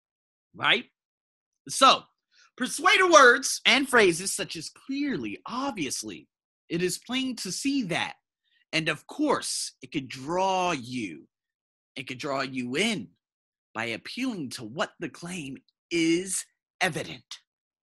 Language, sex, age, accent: English, male, 30-49, American